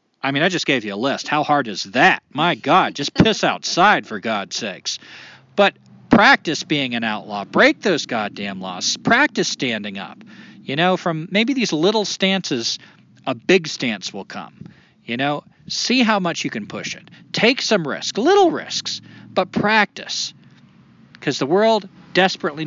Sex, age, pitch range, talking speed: male, 40-59, 130-190 Hz, 170 wpm